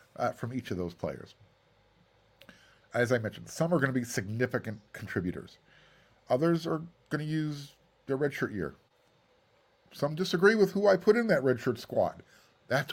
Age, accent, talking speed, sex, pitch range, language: 50-69, American, 160 wpm, male, 110-165 Hz, English